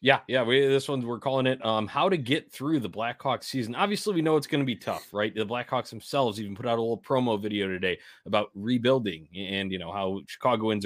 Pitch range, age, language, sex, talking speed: 95-130 Hz, 20-39, English, male, 240 wpm